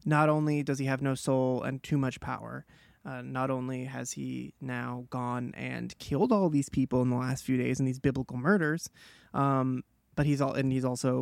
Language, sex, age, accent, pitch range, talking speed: English, male, 20-39, American, 135-170 Hz, 210 wpm